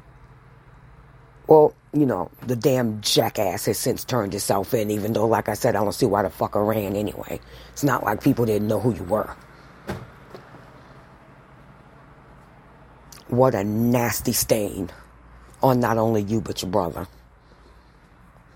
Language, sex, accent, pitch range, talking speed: English, female, American, 100-135 Hz, 140 wpm